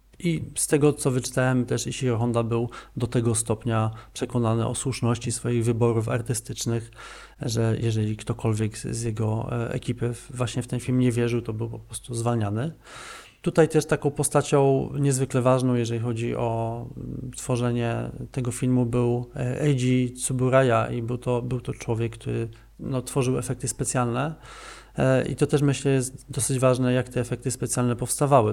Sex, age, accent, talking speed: male, 40-59, native, 150 wpm